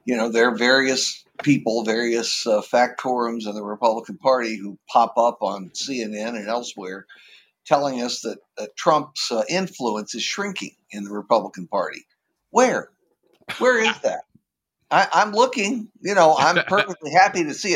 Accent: American